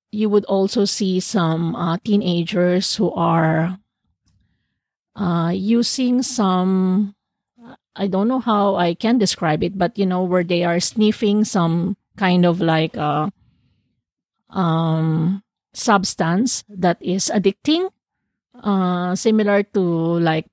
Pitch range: 170-205 Hz